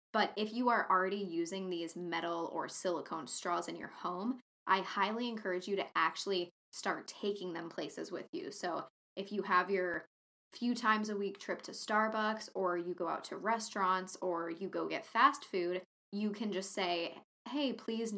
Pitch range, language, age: 180-220 Hz, English, 10-29